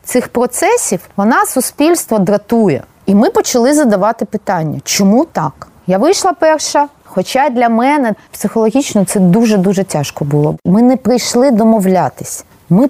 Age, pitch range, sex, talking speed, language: 20-39, 185-265 Hz, female, 135 wpm, Ukrainian